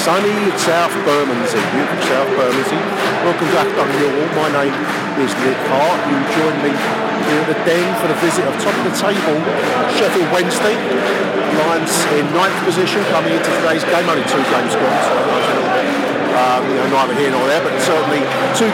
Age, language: 50-69, English